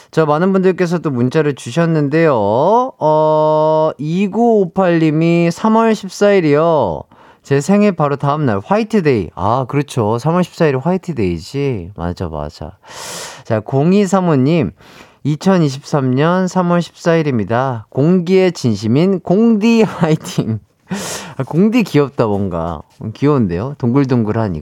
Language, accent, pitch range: Korean, native, 140-200 Hz